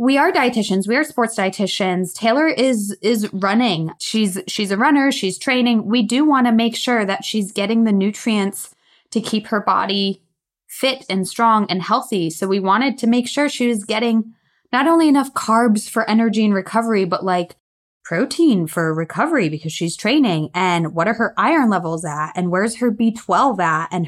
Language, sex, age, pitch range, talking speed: English, female, 20-39, 180-225 Hz, 185 wpm